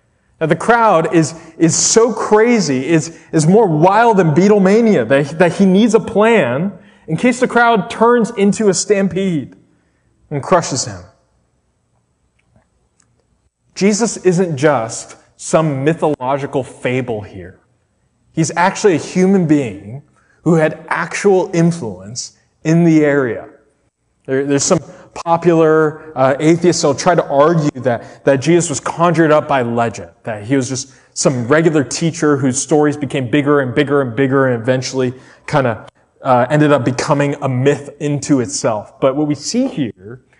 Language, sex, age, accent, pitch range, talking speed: English, male, 20-39, American, 140-185 Hz, 150 wpm